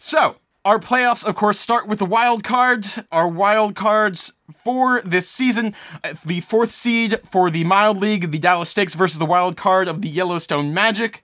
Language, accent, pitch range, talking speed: English, American, 170-220 Hz, 180 wpm